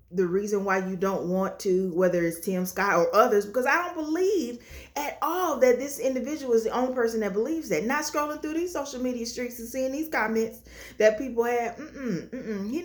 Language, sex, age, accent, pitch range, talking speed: English, female, 30-49, American, 200-295 Hz, 205 wpm